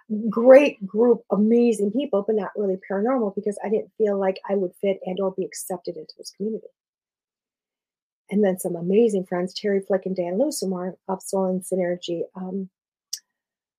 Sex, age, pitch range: female, 40-59, 195-225 Hz